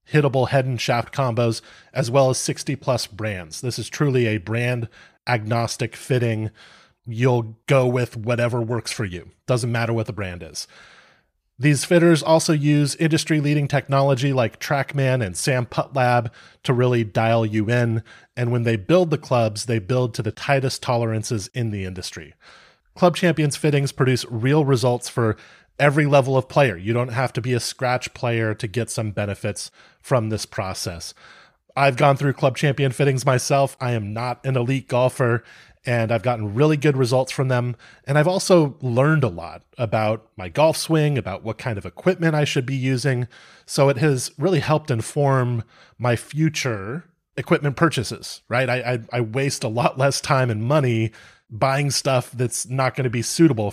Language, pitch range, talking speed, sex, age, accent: English, 115-140 Hz, 175 wpm, male, 30-49, American